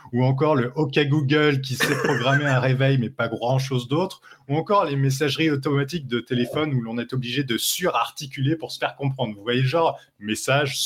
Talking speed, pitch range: 195 wpm, 120-145 Hz